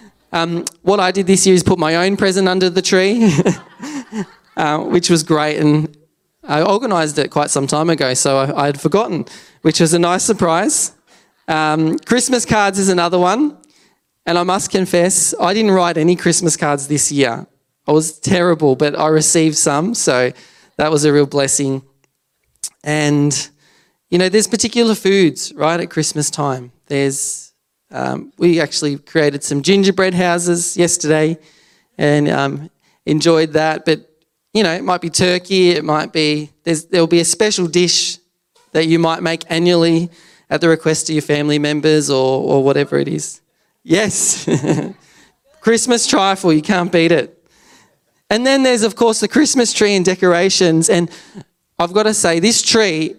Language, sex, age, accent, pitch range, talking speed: English, male, 20-39, Australian, 150-190 Hz, 165 wpm